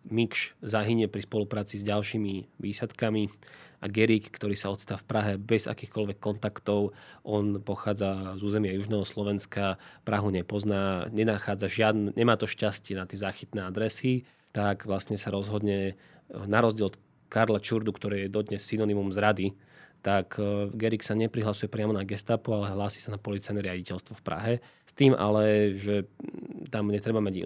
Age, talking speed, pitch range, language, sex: 20-39, 155 wpm, 100-110 Hz, Slovak, male